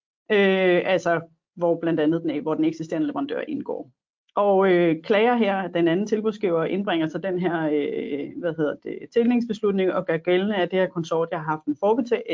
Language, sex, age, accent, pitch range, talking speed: Danish, female, 30-49, native, 170-215 Hz, 190 wpm